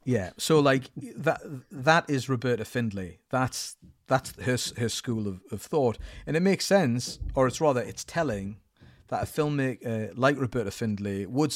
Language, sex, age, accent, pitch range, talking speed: English, male, 40-59, British, 105-130 Hz, 170 wpm